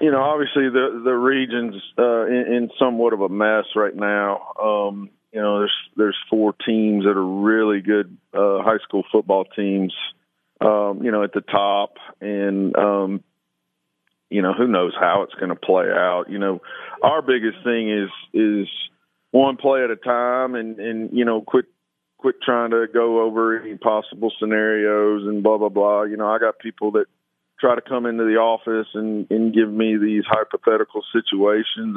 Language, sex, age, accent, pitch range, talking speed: English, male, 40-59, American, 105-120 Hz, 180 wpm